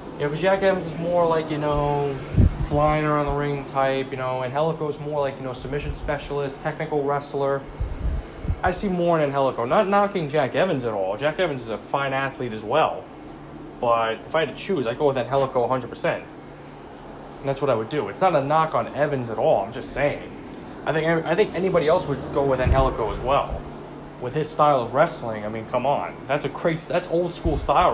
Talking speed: 220 wpm